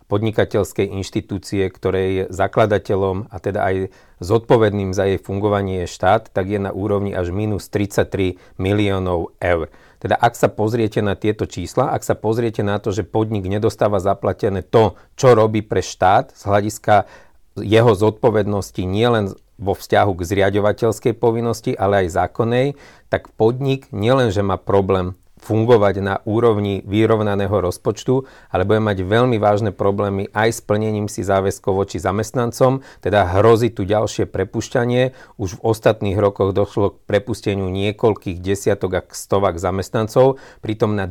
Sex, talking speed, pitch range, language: male, 145 wpm, 100-110 Hz, Slovak